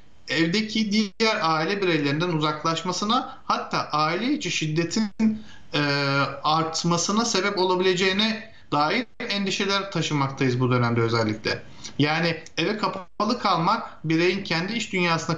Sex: male